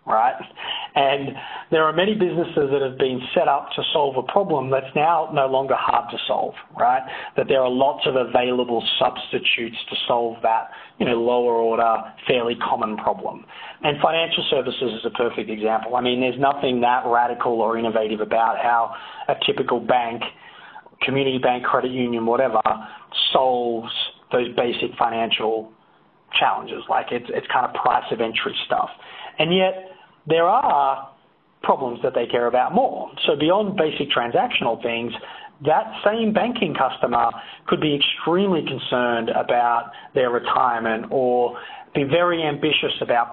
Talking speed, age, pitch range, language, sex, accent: 150 wpm, 30-49, 120-160 Hz, English, male, Australian